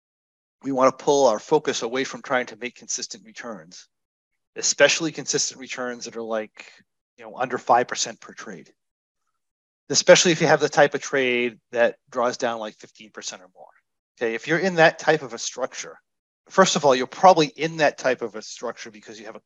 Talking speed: 195 wpm